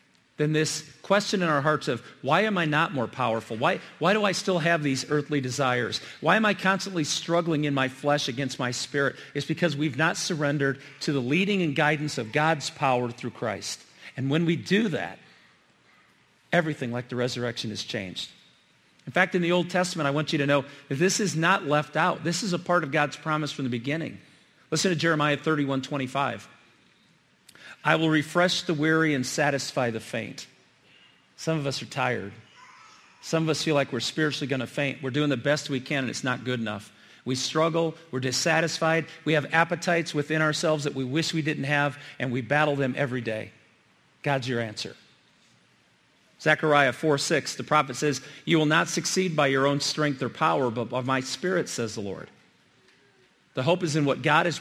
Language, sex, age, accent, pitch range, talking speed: English, male, 50-69, American, 130-160 Hz, 195 wpm